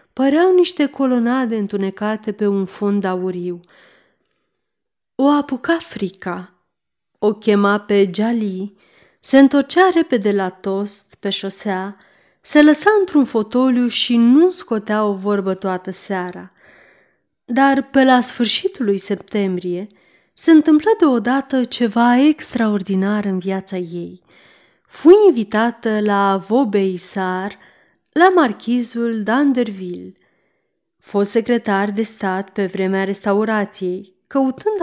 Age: 30-49